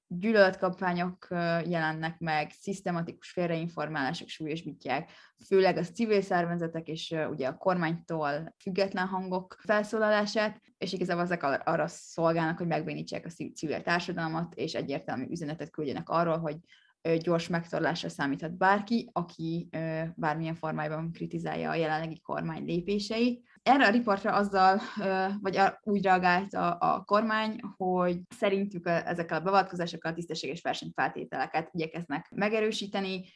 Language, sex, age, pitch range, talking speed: Hungarian, female, 20-39, 160-195 Hz, 115 wpm